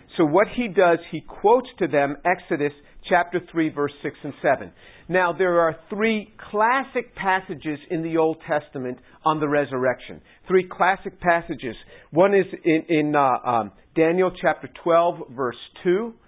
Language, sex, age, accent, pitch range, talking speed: English, male, 50-69, American, 155-195 Hz, 155 wpm